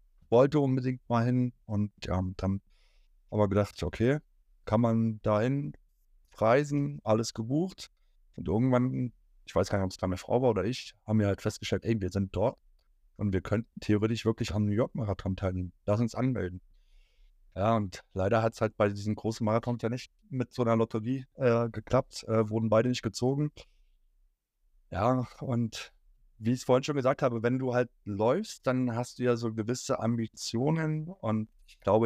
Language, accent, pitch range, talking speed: German, German, 100-120 Hz, 185 wpm